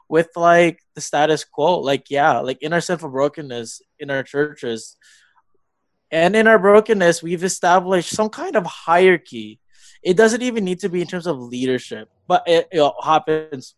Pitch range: 130-170 Hz